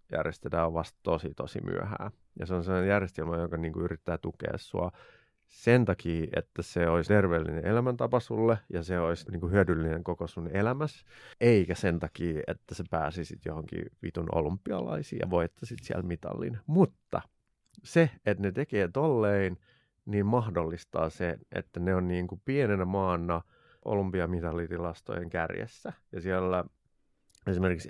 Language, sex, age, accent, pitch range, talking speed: Finnish, male, 30-49, native, 85-105 Hz, 145 wpm